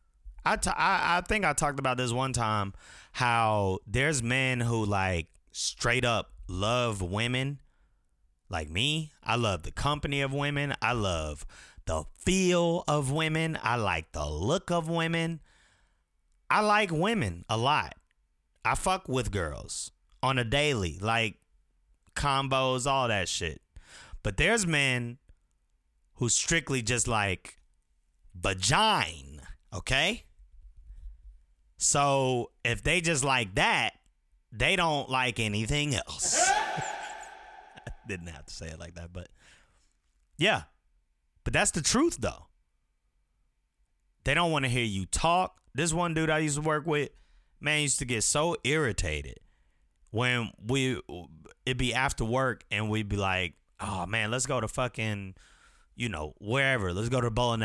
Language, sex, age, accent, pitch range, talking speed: English, male, 30-49, American, 90-145 Hz, 140 wpm